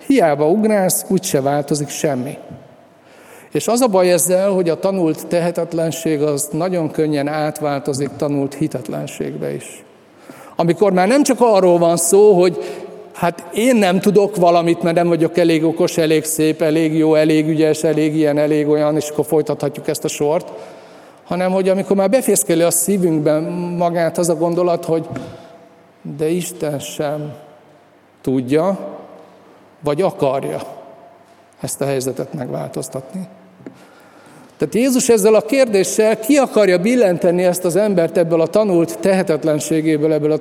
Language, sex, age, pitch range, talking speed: Hungarian, male, 50-69, 145-180 Hz, 140 wpm